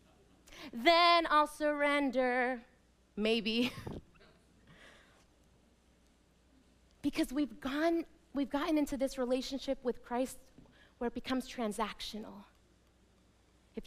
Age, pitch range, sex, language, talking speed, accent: 30-49, 215-285 Hz, female, English, 80 wpm, American